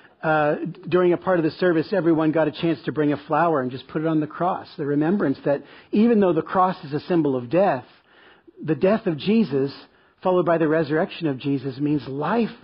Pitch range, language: 140-180 Hz, English